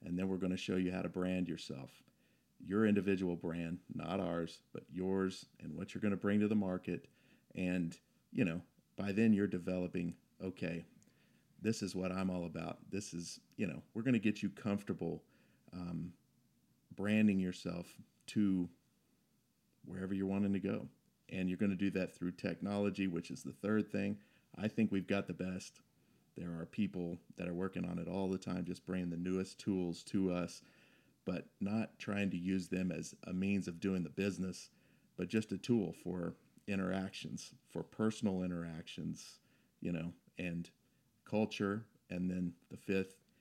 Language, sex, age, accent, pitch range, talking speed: English, male, 40-59, American, 90-100 Hz, 175 wpm